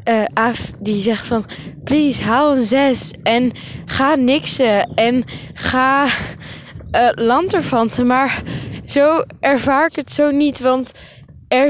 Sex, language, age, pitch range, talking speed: female, Dutch, 10-29, 185-270 Hz, 130 wpm